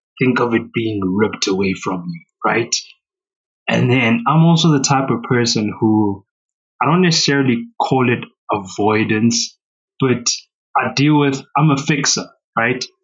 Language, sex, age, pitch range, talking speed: English, male, 20-39, 115-160 Hz, 145 wpm